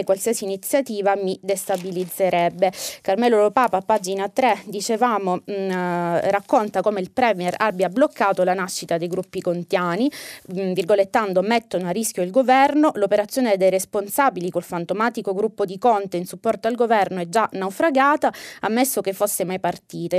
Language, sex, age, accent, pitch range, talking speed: Italian, female, 20-39, native, 180-235 Hz, 135 wpm